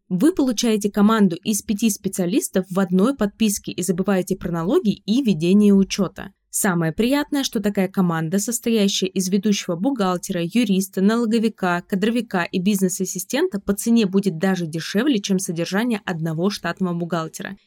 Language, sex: Russian, female